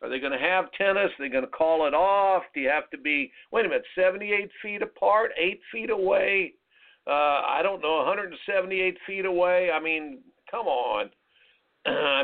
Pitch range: 160-225 Hz